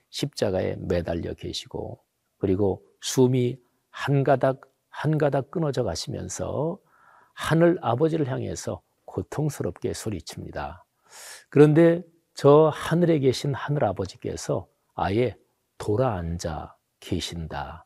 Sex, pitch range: male, 100-145 Hz